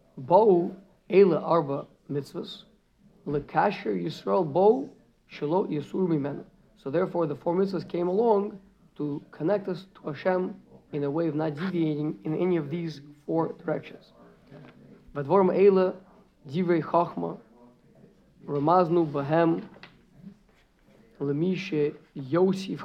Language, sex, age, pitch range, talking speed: English, male, 50-69, 145-185 Hz, 115 wpm